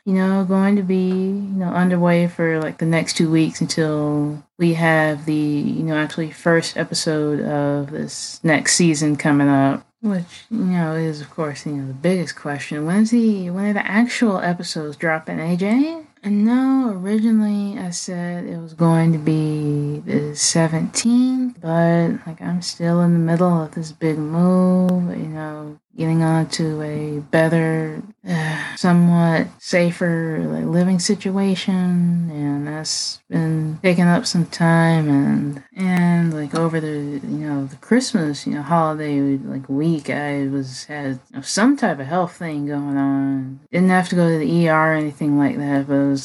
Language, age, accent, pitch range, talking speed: English, 20-39, American, 150-180 Hz, 170 wpm